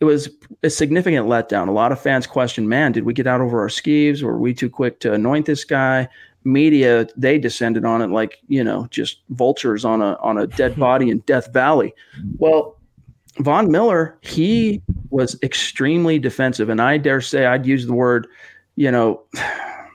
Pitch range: 120-145 Hz